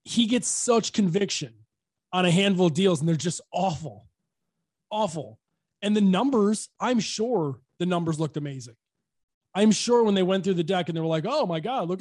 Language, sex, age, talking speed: English, male, 20-39, 195 wpm